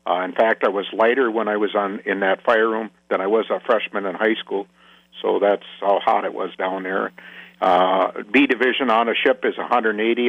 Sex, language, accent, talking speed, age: male, English, American, 220 wpm, 60-79